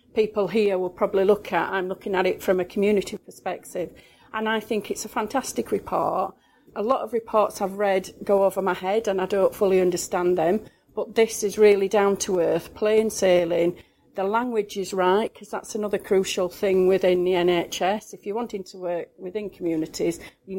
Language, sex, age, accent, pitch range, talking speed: English, female, 40-59, British, 180-210 Hz, 190 wpm